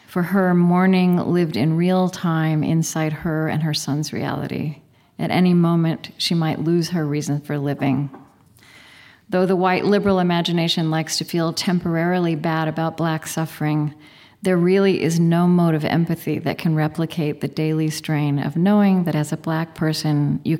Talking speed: 165 wpm